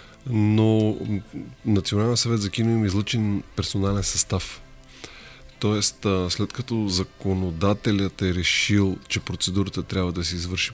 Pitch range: 90-110 Hz